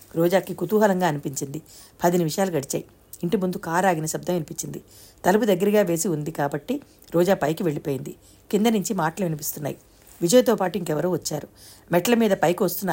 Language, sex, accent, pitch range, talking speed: Telugu, female, native, 155-195 Hz, 145 wpm